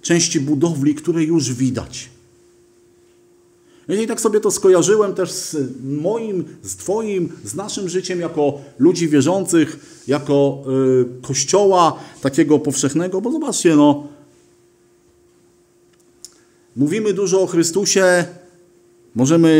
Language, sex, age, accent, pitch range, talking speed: Polish, male, 40-59, native, 130-170 Hz, 100 wpm